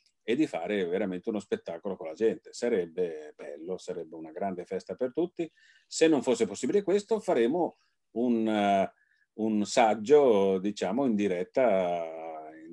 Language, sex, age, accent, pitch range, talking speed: Italian, male, 40-59, native, 95-135 Hz, 145 wpm